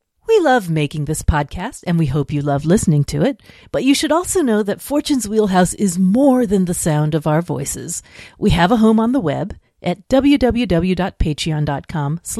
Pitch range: 160-250 Hz